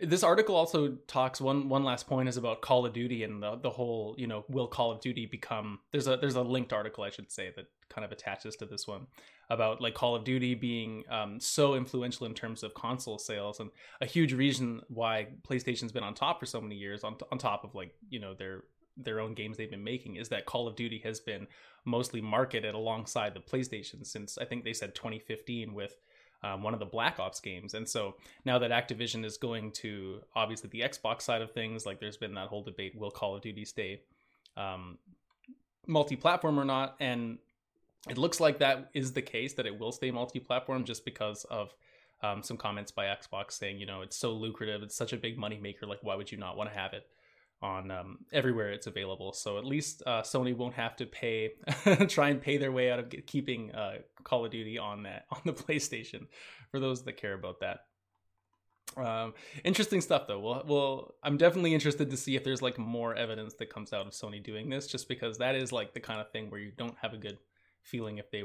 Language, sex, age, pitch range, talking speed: English, male, 20-39, 105-130 Hz, 225 wpm